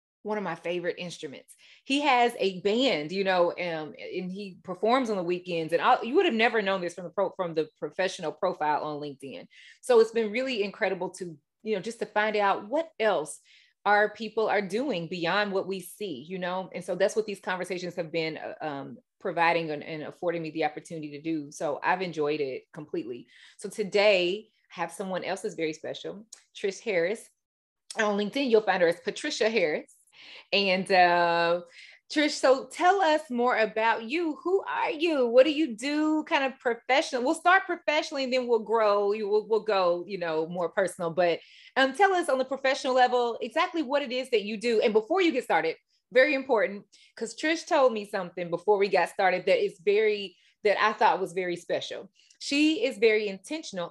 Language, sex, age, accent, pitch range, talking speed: English, female, 30-49, American, 170-250 Hz, 200 wpm